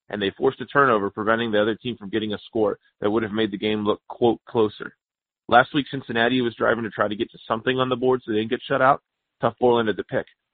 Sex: male